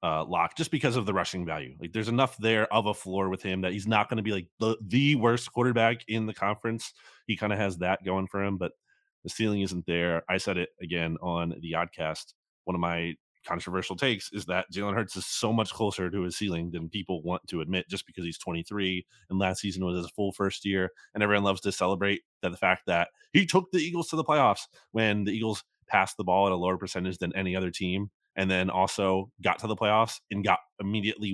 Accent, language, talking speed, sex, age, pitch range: American, English, 235 wpm, male, 20-39, 95-135 Hz